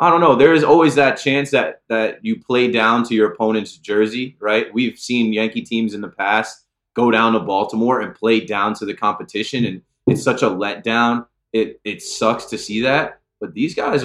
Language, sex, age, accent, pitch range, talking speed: English, male, 20-39, American, 110-145 Hz, 210 wpm